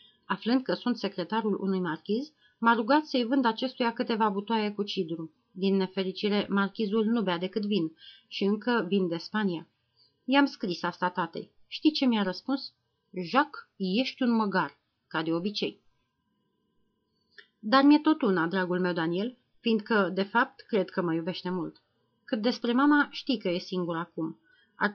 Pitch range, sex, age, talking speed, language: 180-235 Hz, female, 30-49, 160 wpm, Romanian